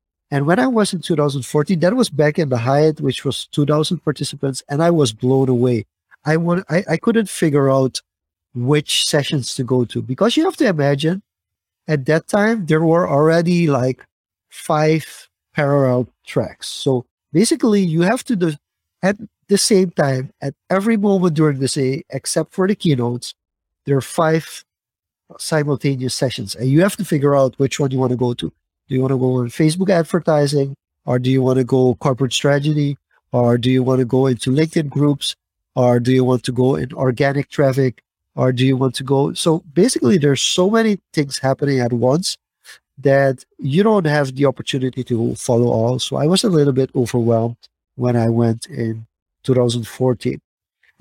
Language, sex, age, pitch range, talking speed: English, male, 50-69, 125-160 Hz, 185 wpm